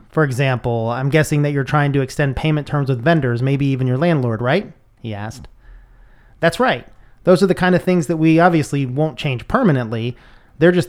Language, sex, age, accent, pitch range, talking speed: English, male, 30-49, American, 130-165 Hz, 200 wpm